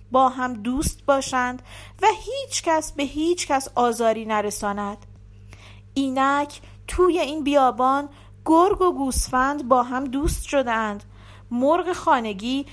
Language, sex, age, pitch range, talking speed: Persian, female, 40-59, 210-305 Hz, 120 wpm